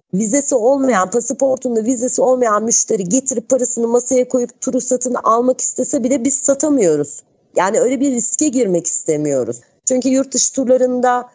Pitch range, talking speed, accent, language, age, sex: 200-255 Hz, 145 wpm, native, Turkish, 40-59, female